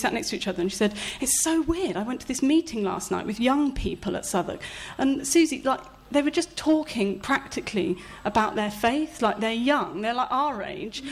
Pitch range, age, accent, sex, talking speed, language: 205-275 Hz, 30-49, British, female, 220 wpm, English